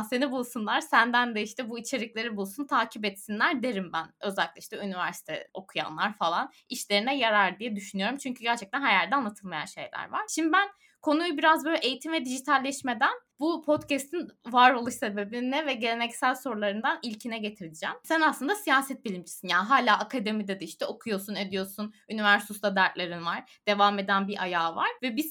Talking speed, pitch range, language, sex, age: 155 wpm, 200-270 Hz, Turkish, female, 20-39